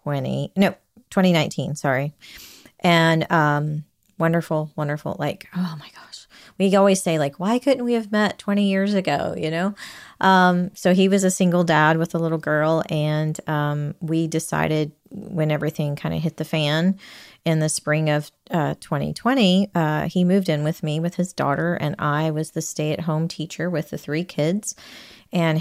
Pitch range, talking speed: 155-180 Hz, 175 wpm